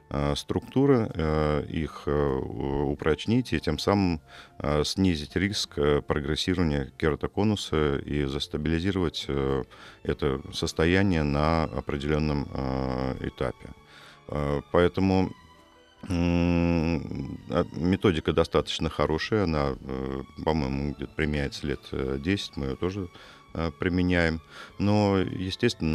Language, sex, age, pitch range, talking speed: Russian, male, 50-69, 70-90 Hz, 75 wpm